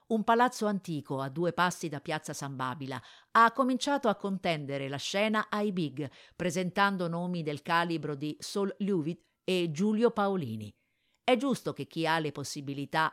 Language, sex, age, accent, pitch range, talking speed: Italian, female, 50-69, native, 155-210 Hz, 160 wpm